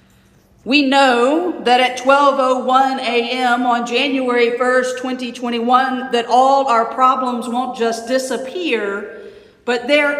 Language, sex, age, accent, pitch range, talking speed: English, female, 50-69, American, 240-280 Hz, 110 wpm